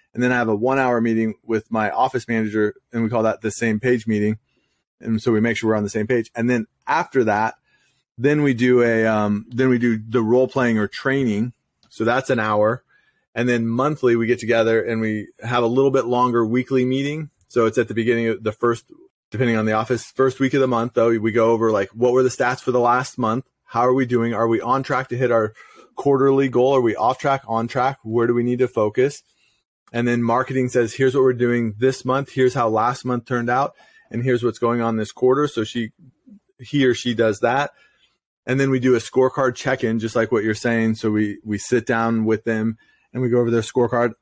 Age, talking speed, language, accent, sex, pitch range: 30-49, 240 wpm, English, American, male, 115-130 Hz